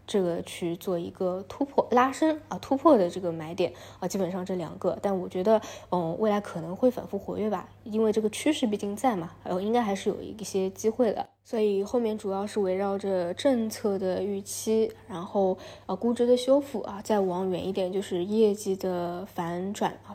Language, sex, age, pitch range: Chinese, female, 20-39, 185-220 Hz